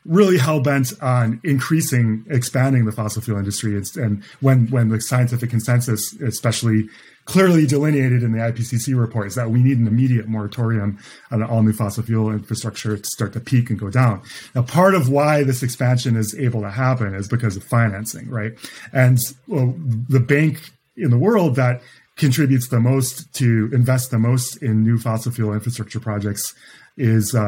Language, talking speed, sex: English, 175 wpm, male